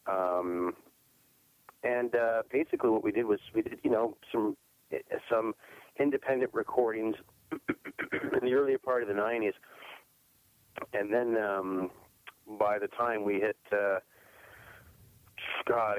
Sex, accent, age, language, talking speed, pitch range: male, American, 30-49, English, 120 wpm, 95-115 Hz